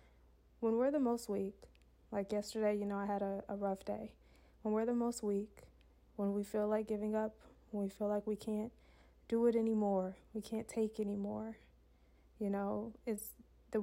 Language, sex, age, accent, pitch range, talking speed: English, female, 20-39, American, 195-225 Hz, 185 wpm